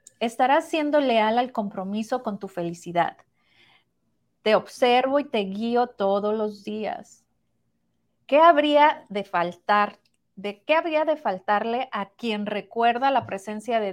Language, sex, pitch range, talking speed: Spanish, female, 200-260 Hz, 135 wpm